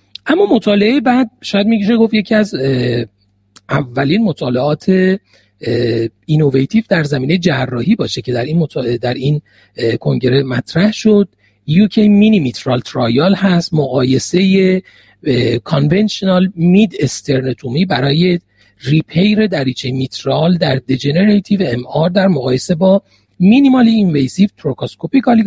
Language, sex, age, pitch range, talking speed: Persian, male, 40-59, 130-205 Hz, 110 wpm